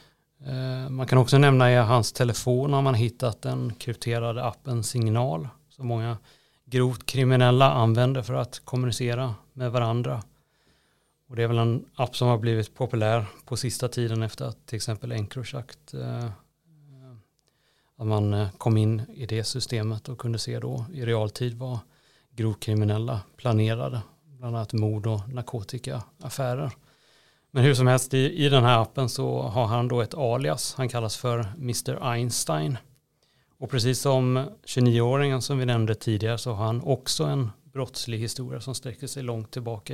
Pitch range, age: 115-130 Hz, 30-49